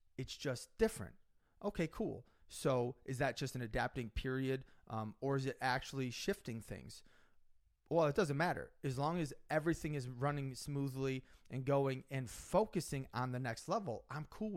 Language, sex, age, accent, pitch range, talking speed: English, male, 30-49, American, 130-160 Hz, 165 wpm